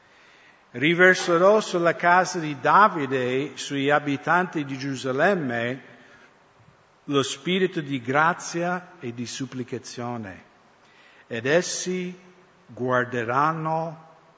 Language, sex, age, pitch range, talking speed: English, male, 60-79, 120-155 Hz, 85 wpm